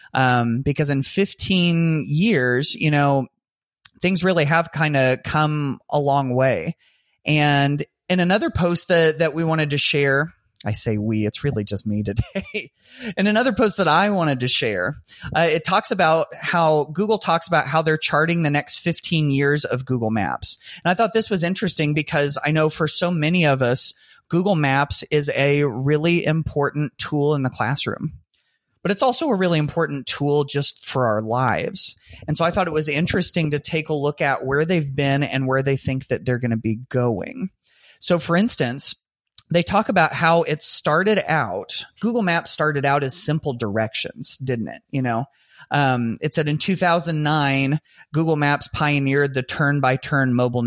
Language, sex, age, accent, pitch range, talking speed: English, male, 30-49, American, 130-165 Hz, 180 wpm